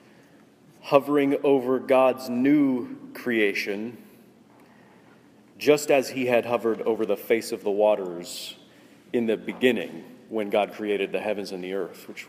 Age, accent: 30-49, American